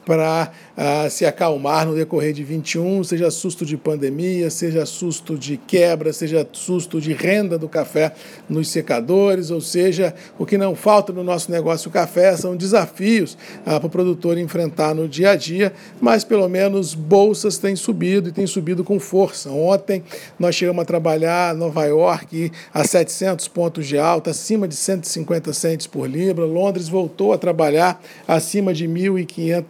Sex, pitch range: male, 165-195 Hz